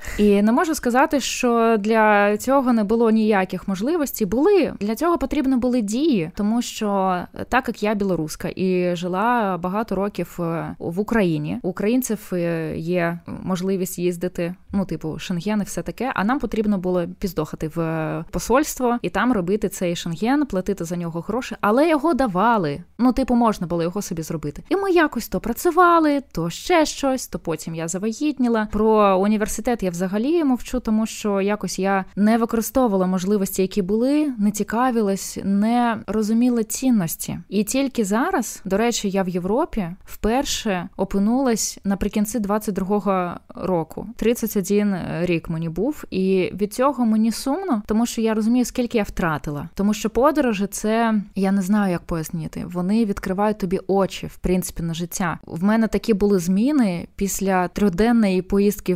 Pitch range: 185-235 Hz